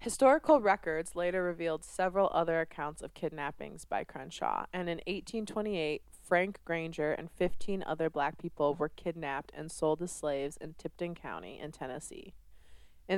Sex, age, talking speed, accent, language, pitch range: female, 20-39, 150 wpm, American, English, 150-180 Hz